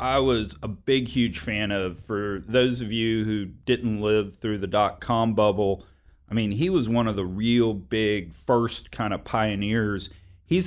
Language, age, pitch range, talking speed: English, 40-59, 95-120 Hz, 180 wpm